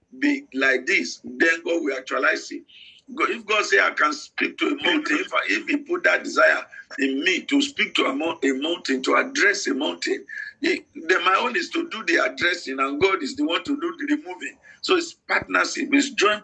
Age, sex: 50-69, male